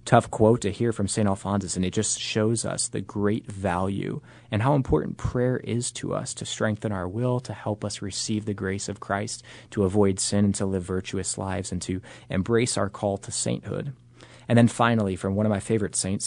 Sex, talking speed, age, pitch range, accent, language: male, 215 wpm, 30-49, 100-120 Hz, American, English